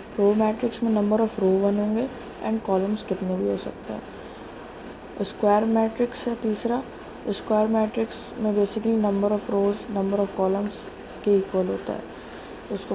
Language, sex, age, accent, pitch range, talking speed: Hindi, female, 20-39, native, 195-220 Hz, 155 wpm